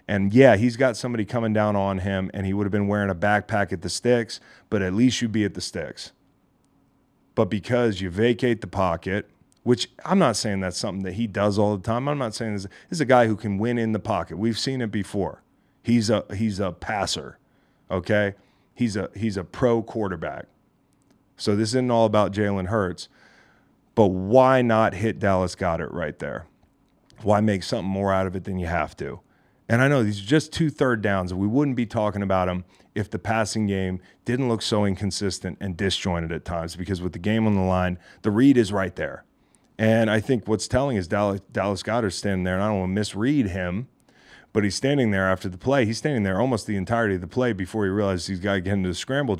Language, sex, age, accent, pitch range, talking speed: English, male, 30-49, American, 95-115 Hz, 225 wpm